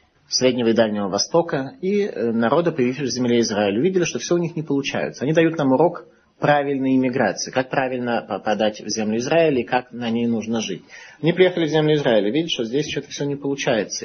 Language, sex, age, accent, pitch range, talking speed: Russian, male, 30-49, native, 110-145 Hz, 200 wpm